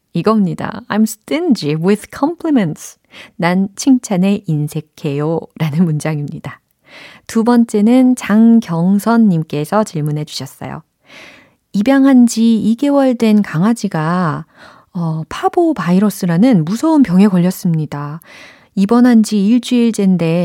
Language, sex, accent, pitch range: Korean, female, native, 160-225 Hz